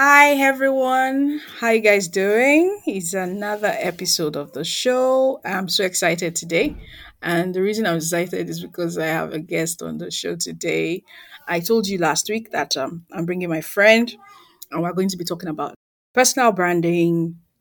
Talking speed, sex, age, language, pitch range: 175 wpm, female, 20-39, English, 165-220 Hz